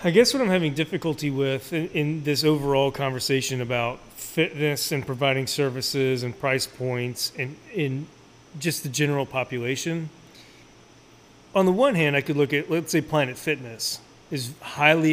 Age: 30-49